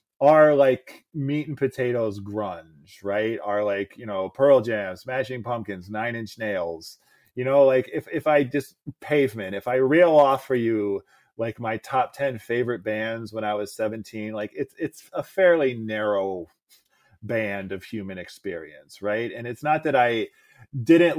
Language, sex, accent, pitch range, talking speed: English, male, American, 105-145 Hz, 170 wpm